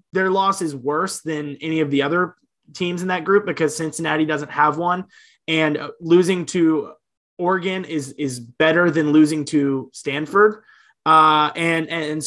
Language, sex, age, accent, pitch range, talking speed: English, male, 20-39, American, 145-170 Hz, 155 wpm